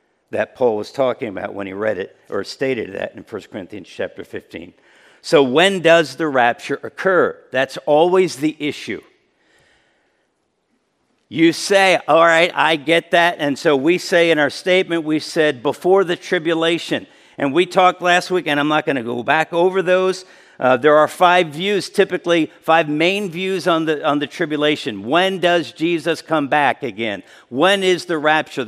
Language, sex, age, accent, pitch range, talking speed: English, male, 50-69, American, 155-190 Hz, 175 wpm